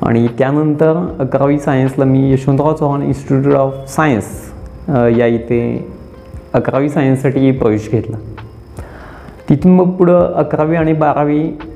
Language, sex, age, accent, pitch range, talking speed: Marathi, male, 30-49, native, 125-160 Hz, 110 wpm